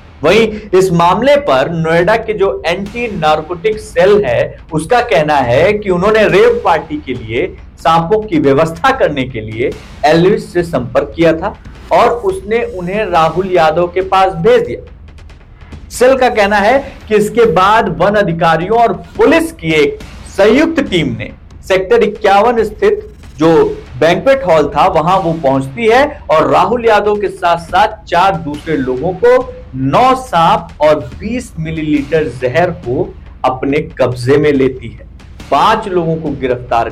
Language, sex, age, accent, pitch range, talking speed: Hindi, male, 50-69, native, 155-225 Hz, 150 wpm